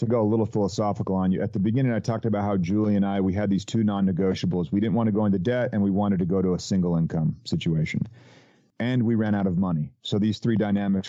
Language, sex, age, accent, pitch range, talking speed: English, male, 40-59, American, 100-130 Hz, 265 wpm